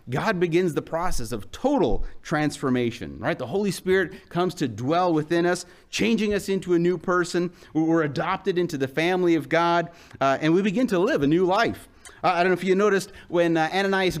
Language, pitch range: English, 145-205 Hz